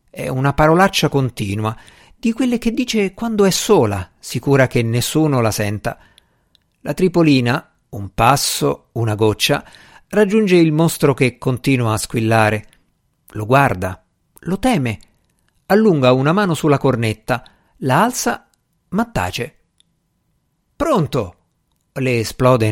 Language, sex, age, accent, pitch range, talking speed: Italian, male, 50-69, native, 110-170 Hz, 120 wpm